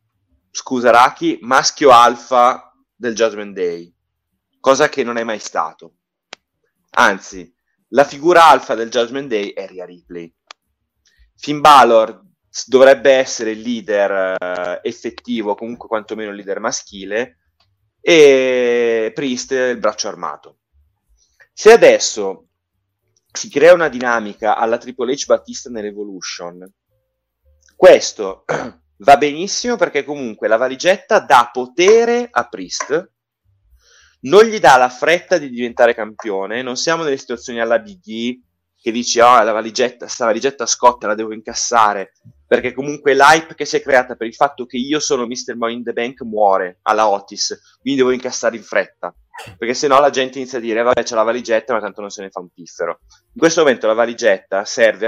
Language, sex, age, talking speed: Italian, male, 30-49, 150 wpm